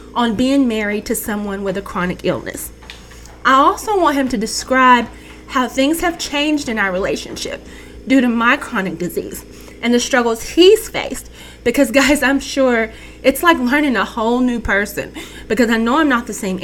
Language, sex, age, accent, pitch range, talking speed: English, female, 20-39, American, 200-275 Hz, 180 wpm